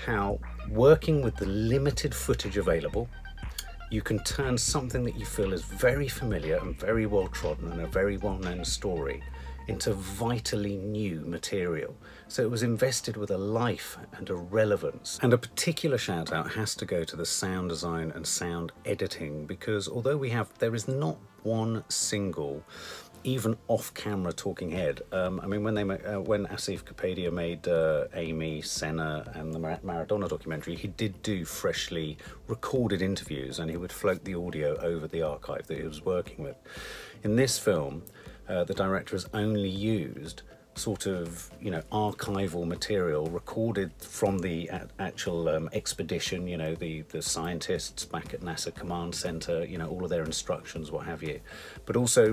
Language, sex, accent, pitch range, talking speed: English, male, British, 85-110 Hz, 170 wpm